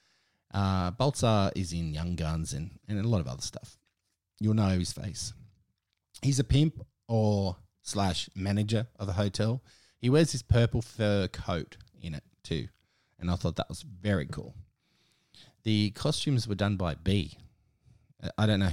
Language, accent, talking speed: English, Australian, 165 wpm